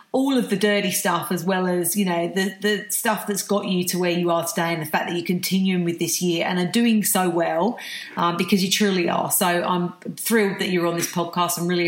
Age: 40-59